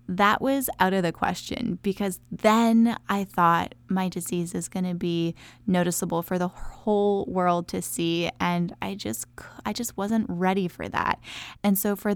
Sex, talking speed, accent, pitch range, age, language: female, 170 wpm, American, 180-215 Hz, 10-29, English